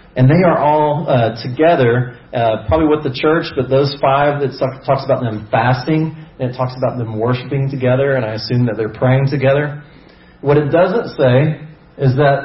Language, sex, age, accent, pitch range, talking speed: English, male, 40-59, American, 115-145 Hz, 190 wpm